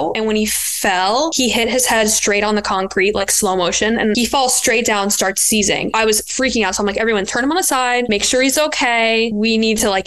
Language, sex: English, female